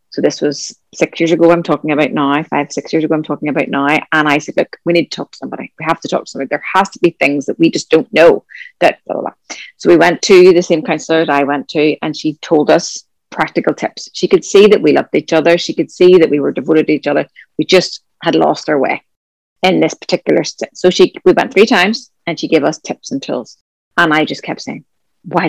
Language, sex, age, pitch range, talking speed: English, female, 30-49, 155-195 Hz, 265 wpm